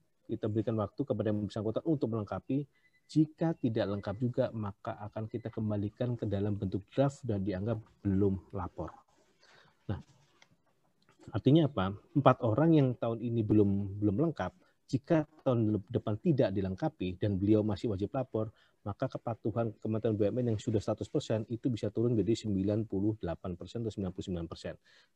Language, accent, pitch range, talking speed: Indonesian, native, 100-125 Hz, 140 wpm